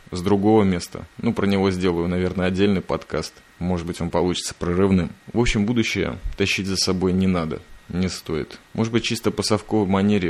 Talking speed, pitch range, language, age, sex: 180 wpm, 90-105 Hz, Russian, 20-39, male